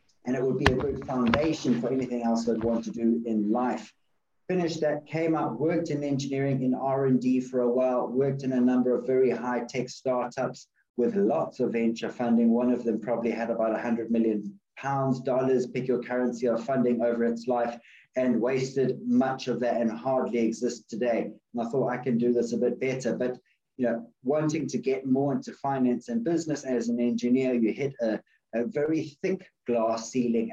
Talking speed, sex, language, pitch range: 200 wpm, male, English, 115-130 Hz